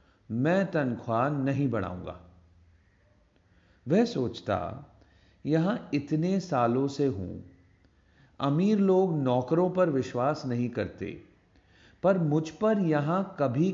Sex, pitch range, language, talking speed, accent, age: male, 95-155 Hz, Hindi, 100 wpm, native, 40-59